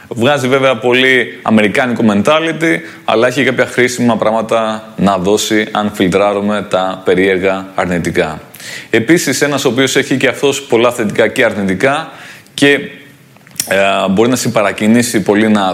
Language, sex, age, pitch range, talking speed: Greek, male, 30-49, 100-125 Hz, 135 wpm